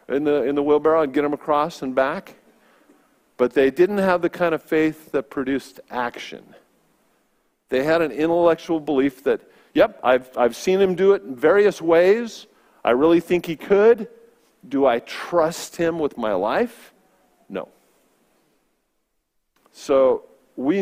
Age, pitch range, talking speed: 50-69, 130-170 Hz, 155 wpm